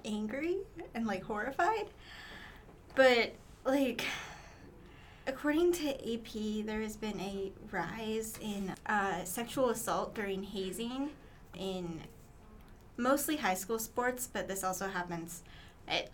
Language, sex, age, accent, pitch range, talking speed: English, female, 20-39, American, 190-230 Hz, 110 wpm